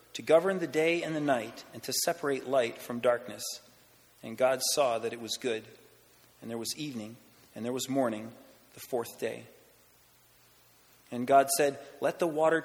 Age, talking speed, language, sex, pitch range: 30-49, 175 wpm, English, male, 120-155 Hz